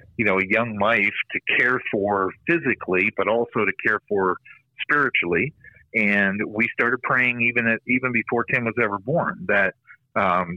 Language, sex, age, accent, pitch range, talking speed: English, male, 50-69, American, 105-120 Hz, 165 wpm